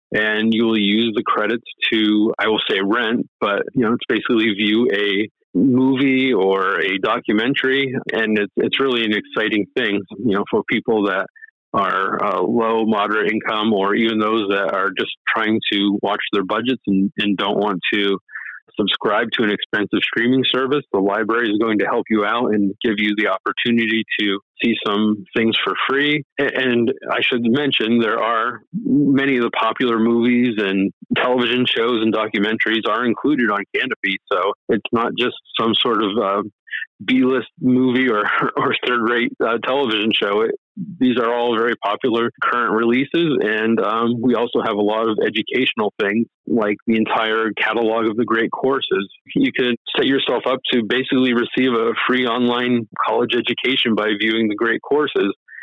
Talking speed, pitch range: 175 wpm, 110-125 Hz